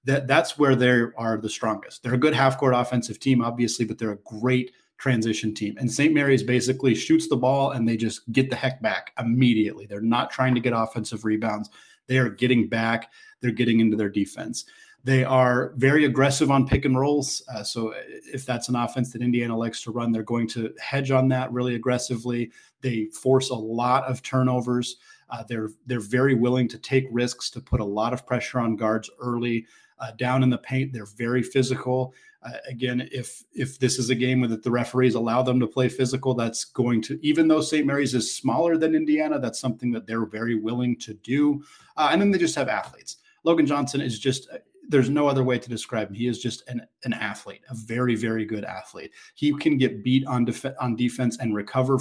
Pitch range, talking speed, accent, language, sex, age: 115-135 Hz, 210 wpm, American, English, male, 30-49